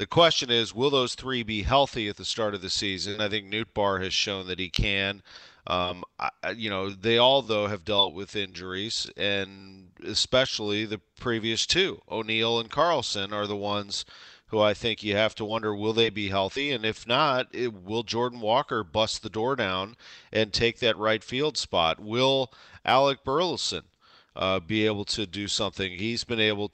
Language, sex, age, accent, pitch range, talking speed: English, male, 40-59, American, 100-115 Hz, 190 wpm